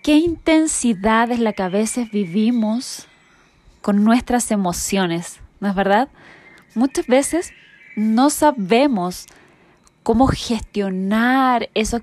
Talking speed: 105 wpm